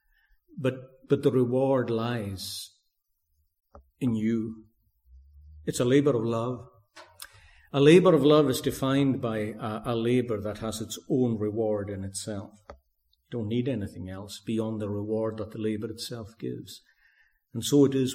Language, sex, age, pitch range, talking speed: English, male, 50-69, 95-125 Hz, 150 wpm